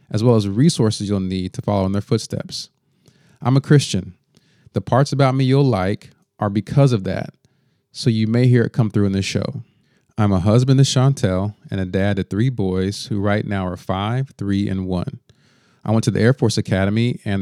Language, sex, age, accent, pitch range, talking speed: English, male, 30-49, American, 100-125 Hz, 210 wpm